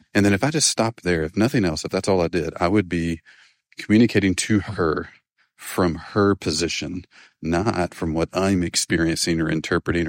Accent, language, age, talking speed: American, English, 30-49, 185 wpm